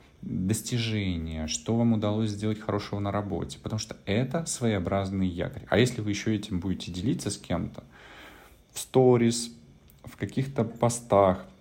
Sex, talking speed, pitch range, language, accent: male, 140 wpm, 90-115 Hz, Russian, native